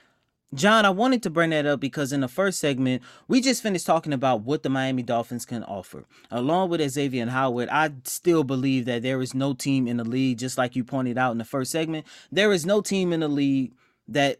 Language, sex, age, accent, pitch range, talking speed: English, male, 20-39, American, 130-180 Hz, 235 wpm